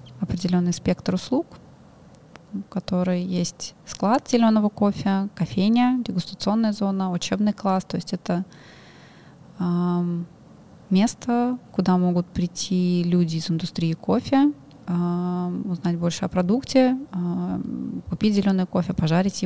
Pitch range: 175-200 Hz